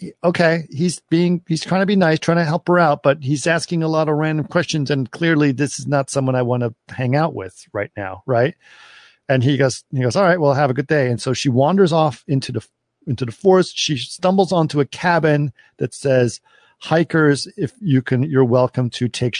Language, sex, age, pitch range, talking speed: English, male, 50-69, 115-150 Hz, 225 wpm